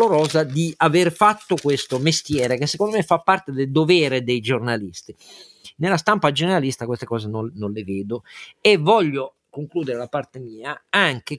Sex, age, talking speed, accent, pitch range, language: male, 50-69, 165 wpm, native, 115-165 Hz, Italian